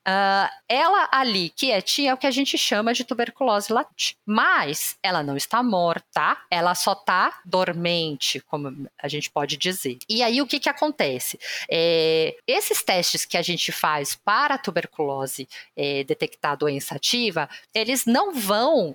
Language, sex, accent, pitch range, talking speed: Portuguese, female, Brazilian, 170-255 Hz, 150 wpm